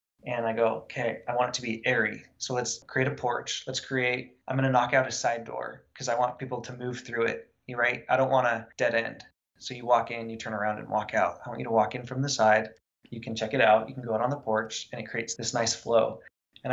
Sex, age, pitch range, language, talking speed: male, 20-39, 120-135 Hz, English, 285 wpm